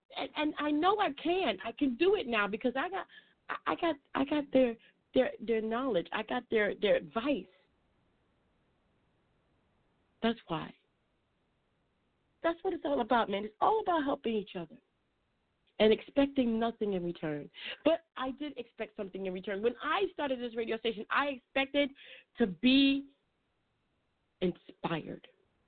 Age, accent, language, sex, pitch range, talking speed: 40-59, American, English, female, 210-280 Hz, 150 wpm